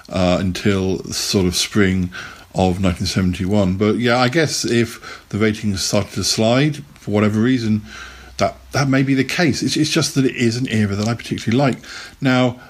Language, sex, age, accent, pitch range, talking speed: English, male, 50-69, British, 100-120 Hz, 185 wpm